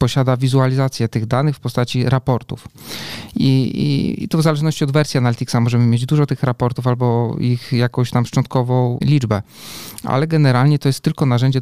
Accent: native